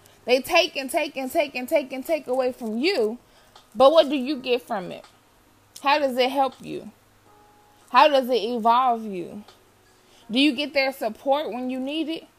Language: English